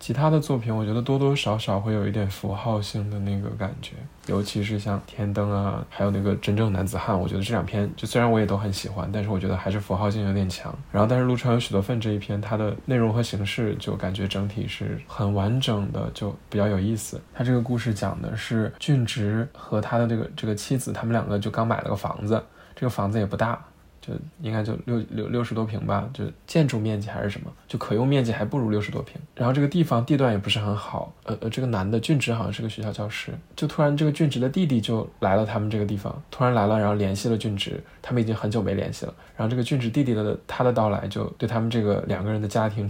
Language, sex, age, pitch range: Chinese, male, 20-39, 105-125 Hz